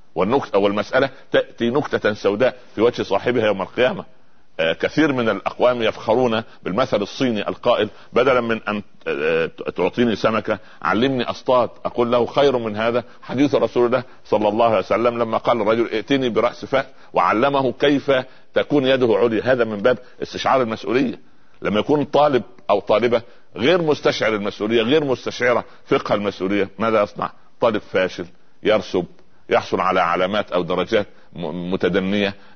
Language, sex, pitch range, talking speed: Arabic, male, 95-125 Hz, 135 wpm